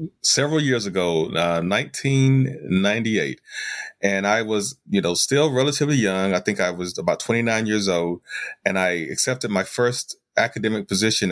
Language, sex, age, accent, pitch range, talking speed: English, male, 30-49, American, 100-125 Hz, 150 wpm